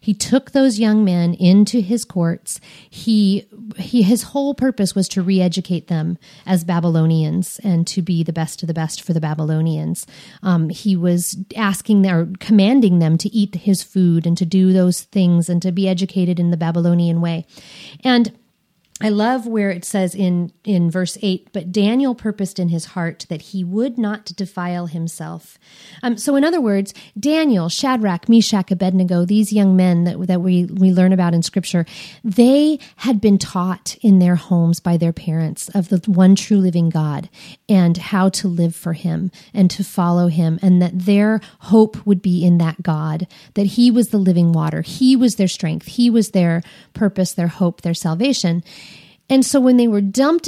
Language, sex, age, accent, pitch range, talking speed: English, female, 40-59, American, 170-210 Hz, 185 wpm